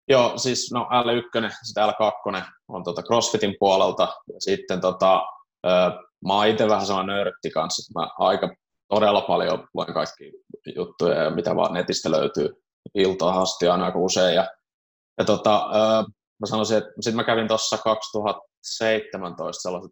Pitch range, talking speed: 95-110 Hz, 135 wpm